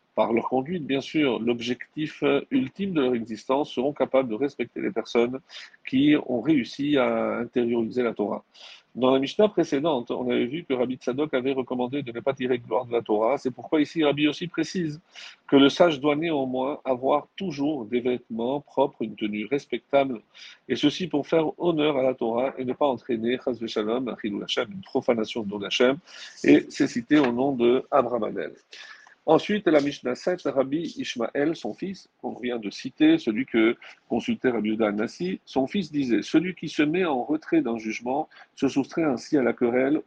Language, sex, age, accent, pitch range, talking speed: French, male, 50-69, French, 120-155 Hz, 190 wpm